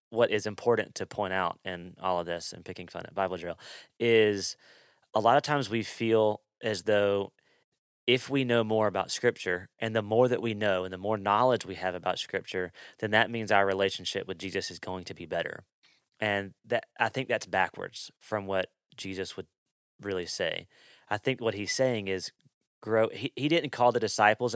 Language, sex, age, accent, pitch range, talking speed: English, male, 30-49, American, 95-115 Hz, 200 wpm